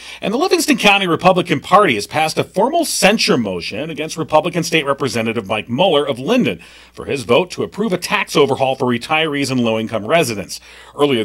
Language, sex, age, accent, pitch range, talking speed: English, male, 40-59, American, 115-160 Hz, 180 wpm